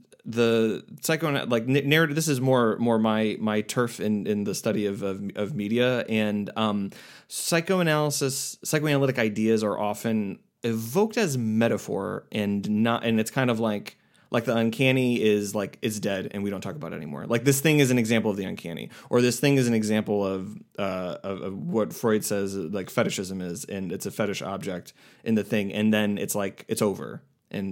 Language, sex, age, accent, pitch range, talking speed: English, male, 20-39, American, 105-130 Hz, 195 wpm